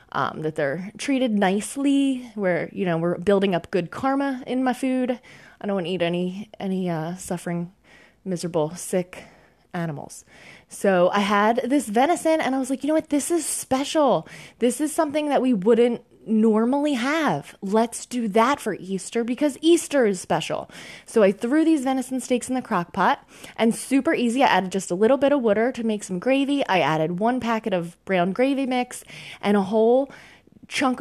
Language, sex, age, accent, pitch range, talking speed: English, female, 20-39, American, 185-260 Hz, 190 wpm